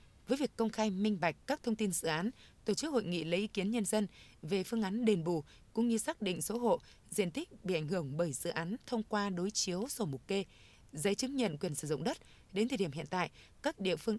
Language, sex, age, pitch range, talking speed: Vietnamese, female, 20-39, 180-225 Hz, 260 wpm